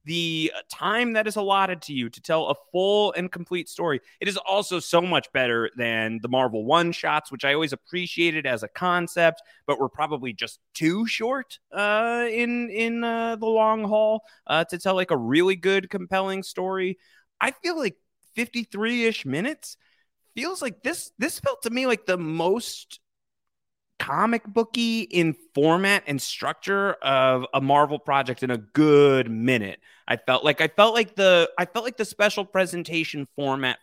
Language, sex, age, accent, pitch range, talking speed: English, male, 30-49, American, 130-185 Hz, 175 wpm